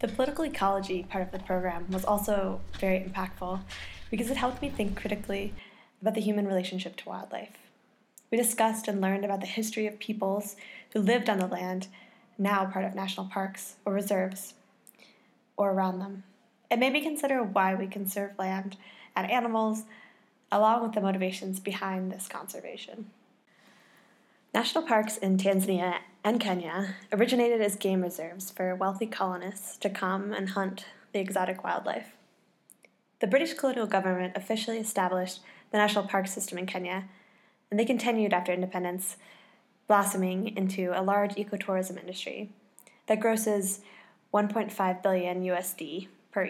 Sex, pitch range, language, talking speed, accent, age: female, 190-220 Hz, English, 145 wpm, American, 10-29